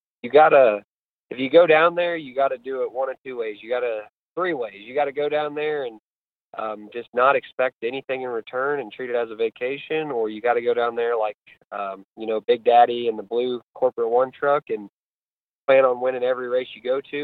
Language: English